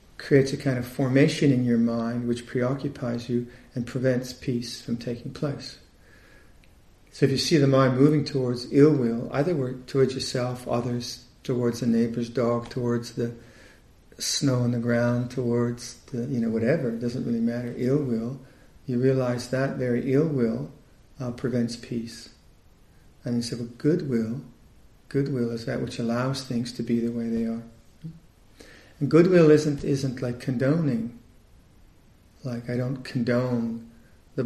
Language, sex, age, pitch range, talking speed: English, male, 50-69, 115-130 Hz, 150 wpm